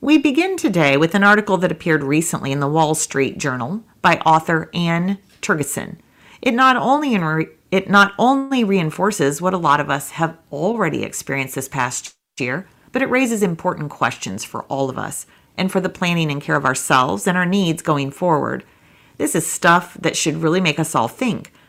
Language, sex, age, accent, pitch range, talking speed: English, female, 40-59, American, 150-195 Hz, 180 wpm